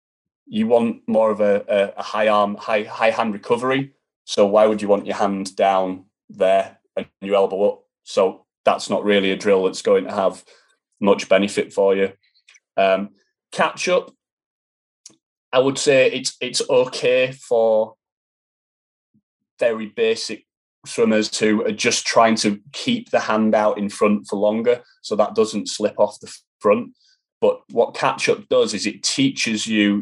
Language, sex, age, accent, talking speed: English, male, 30-49, British, 160 wpm